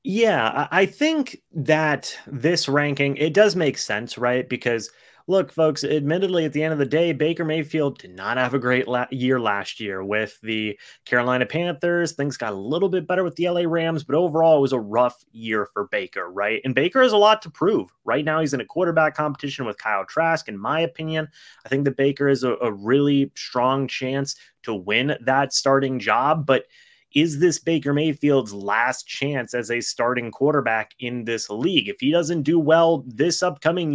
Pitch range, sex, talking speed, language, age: 125-160 Hz, male, 195 wpm, English, 30-49